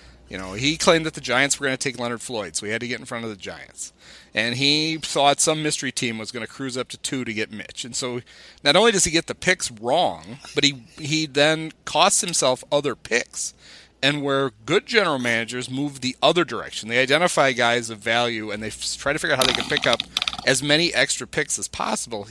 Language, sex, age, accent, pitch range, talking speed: English, male, 40-59, American, 110-145 Hz, 235 wpm